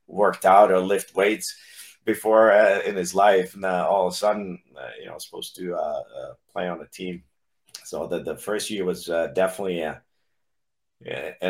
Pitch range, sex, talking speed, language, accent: 80-110 Hz, male, 205 wpm, English, American